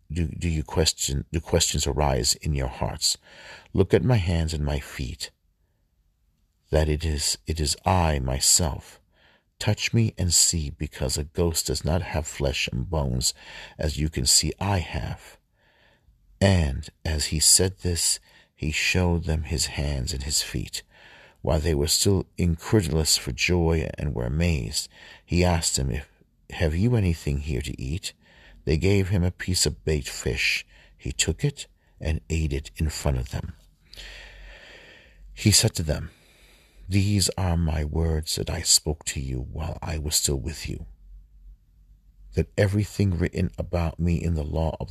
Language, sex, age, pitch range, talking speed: English, male, 50-69, 75-90 Hz, 165 wpm